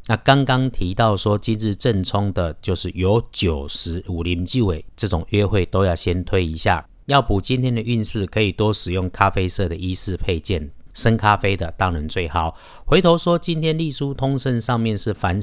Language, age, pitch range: Chinese, 50-69, 90-125 Hz